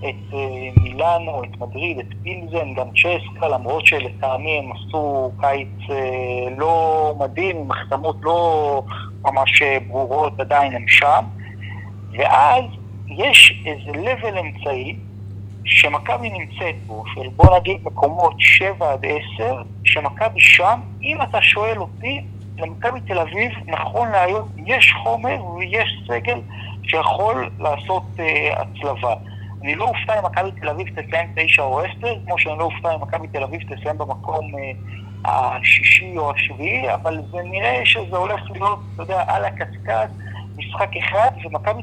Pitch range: 100-135 Hz